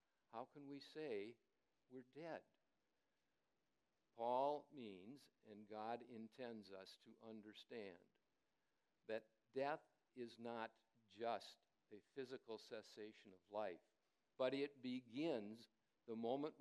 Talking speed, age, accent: 105 wpm, 50-69, American